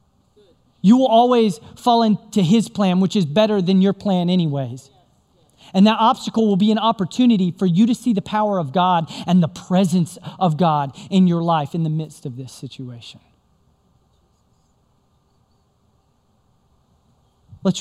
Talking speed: 150 wpm